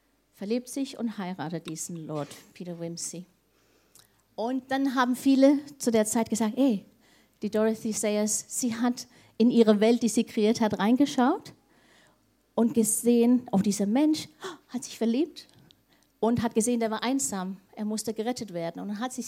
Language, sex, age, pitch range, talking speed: German, female, 50-69, 200-255 Hz, 160 wpm